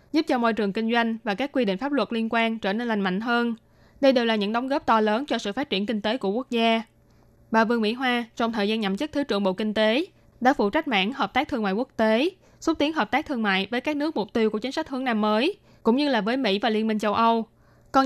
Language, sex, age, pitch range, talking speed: Vietnamese, female, 20-39, 210-255 Hz, 290 wpm